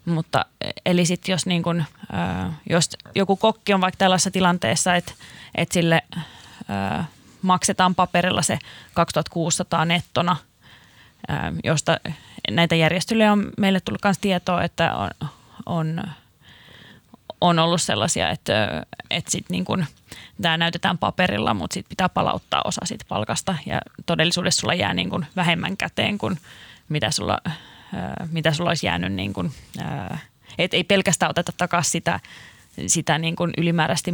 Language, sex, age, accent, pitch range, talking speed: Finnish, female, 20-39, native, 165-190 Hz, 130 wpm